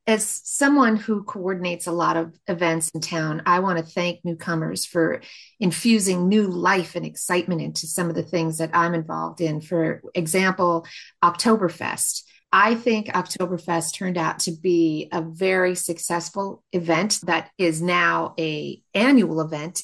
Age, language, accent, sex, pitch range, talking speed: 40-59, English, American, female, 170-210 Hz, 150 wpm